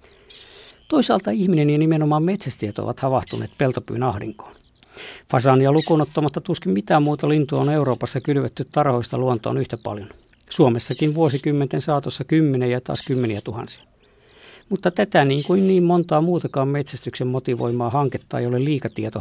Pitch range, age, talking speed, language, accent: 120-160 Hz, 50-69, 135 wpm, Finnish, native